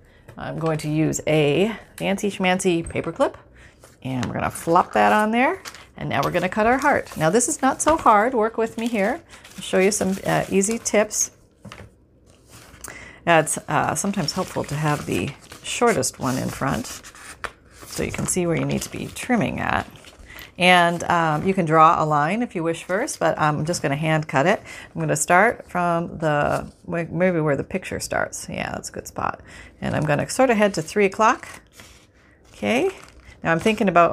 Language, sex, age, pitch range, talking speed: English, female, 40-59, 160-215 Hz, 200 wpm